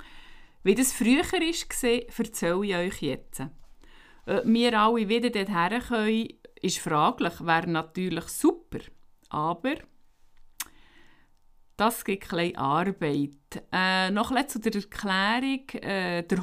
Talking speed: 115 wpm